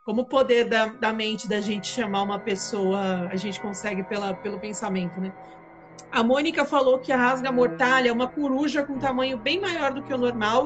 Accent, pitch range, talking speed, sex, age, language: Brazilian, 195-255 Hz, 210 wpm, female, 40-59, Portuguese